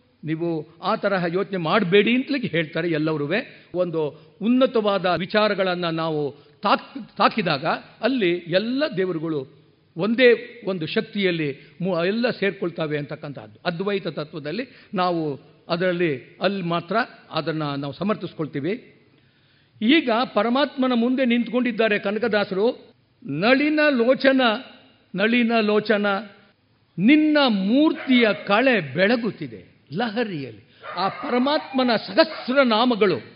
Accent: native